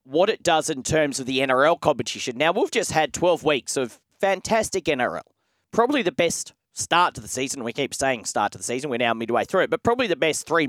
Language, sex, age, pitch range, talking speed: English, male, 30-49, 130-160 Hz, 235 wpm